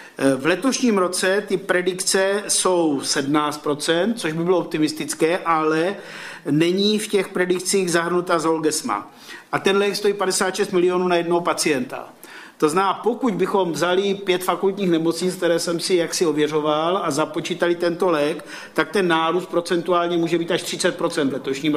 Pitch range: 160-195 Hz